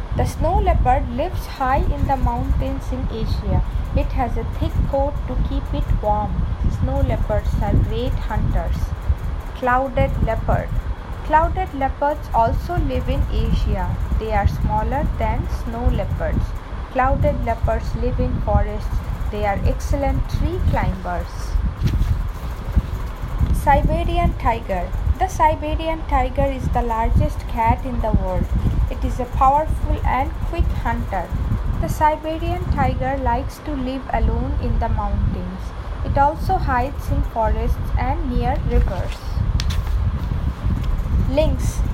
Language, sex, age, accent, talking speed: English, female, 20-39, Indian, 125 wpm